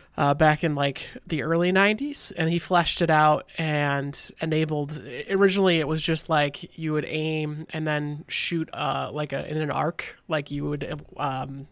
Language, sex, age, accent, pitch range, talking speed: English, male, 20-39, American, 140-160 Hz, 175 wpm